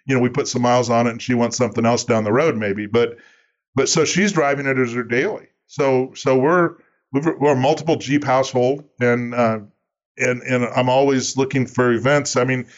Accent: American